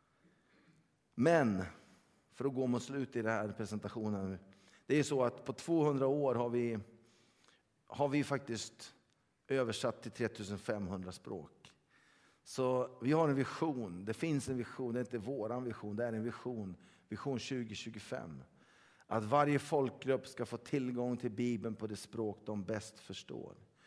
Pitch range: 105-120 Hz